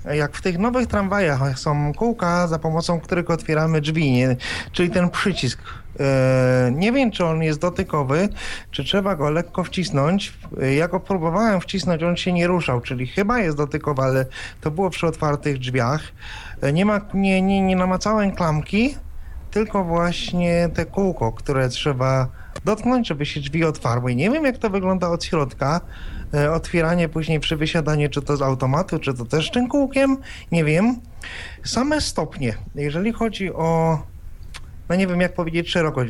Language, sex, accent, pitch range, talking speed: Polish, male, native, 145-195 Hz, 150 wpm